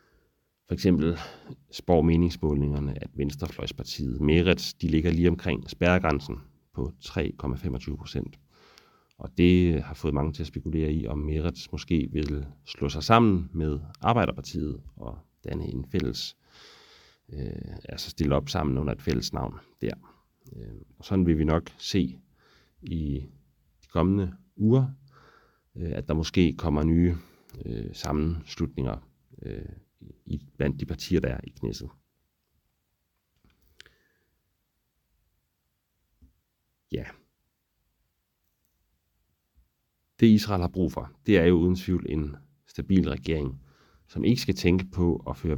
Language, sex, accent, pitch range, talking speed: English, male, Danish, 70-85 Hz, 120 wpm